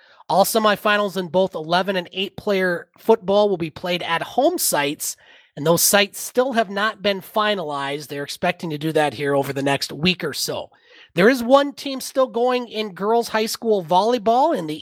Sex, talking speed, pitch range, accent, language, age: male, 190 wpm, 165-215 Hz, American, English, 30-49